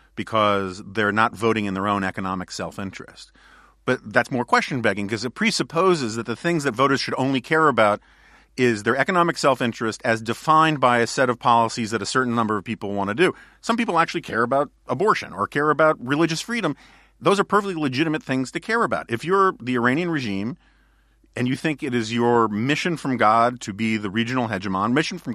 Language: English